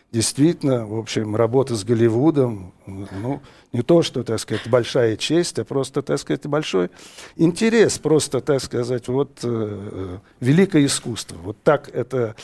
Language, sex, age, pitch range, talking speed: Russian, male, 60-79, 105-150 Hz, 145 wpm